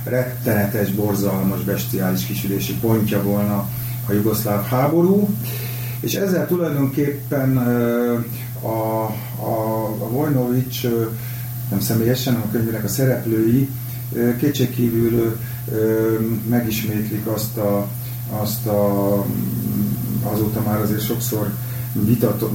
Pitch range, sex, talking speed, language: 105-120 Hz, male, 85 wpm, Hungarian